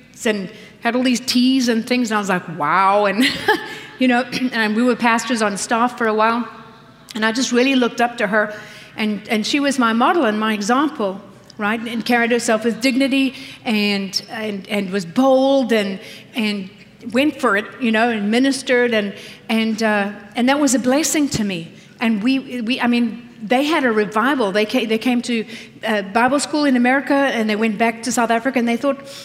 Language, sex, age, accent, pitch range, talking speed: English, female, 50-69, American, 210-250 Hz, 205 wpm